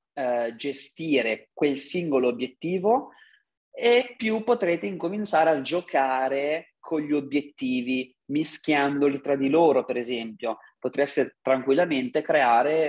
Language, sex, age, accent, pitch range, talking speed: Italian, male, 30-49, native, 135-185 Hz, 105 wpm